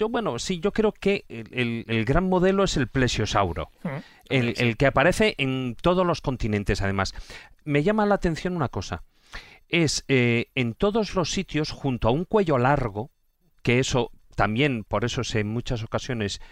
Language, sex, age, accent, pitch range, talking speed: Spanish, male, 40-59, Spanish, 115-155 Hz, 165 wpm